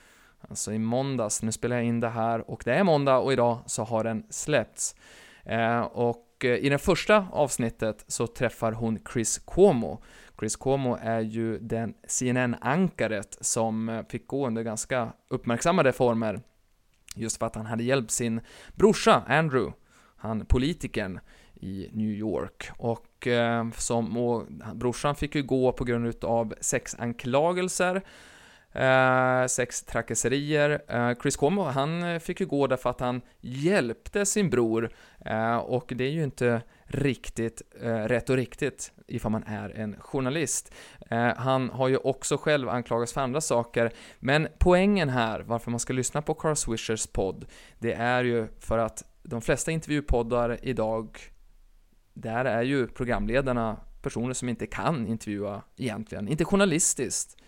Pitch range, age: 115-135 Hz, 20-39